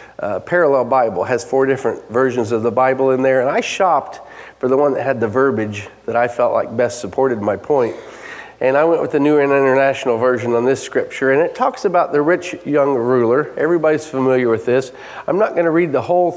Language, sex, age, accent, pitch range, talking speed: English, male, 40-59, American, 125-175 Hz, 225 wpm